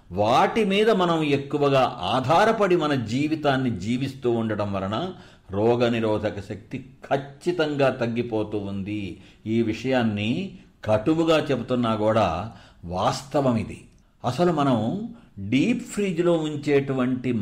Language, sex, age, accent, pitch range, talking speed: Telugu, male, 60-79, native, 105-145 Hz, 95 wpm